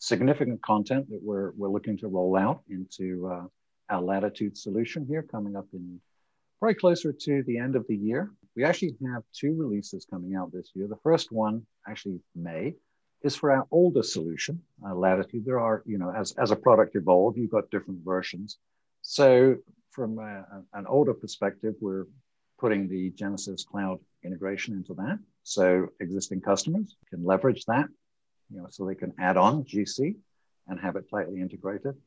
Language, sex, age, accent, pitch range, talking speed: English, male, 60-79, American, 95-135 Hz, 175 wpm